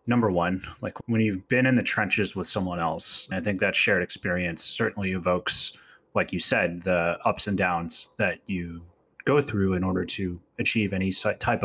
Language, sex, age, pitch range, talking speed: English, male, 30-49, 90-110 Hz, 190 wpm